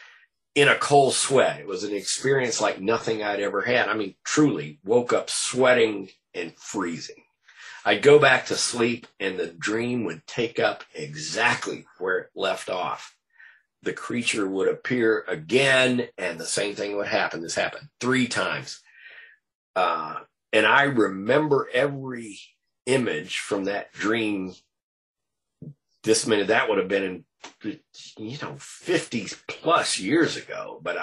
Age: 40-59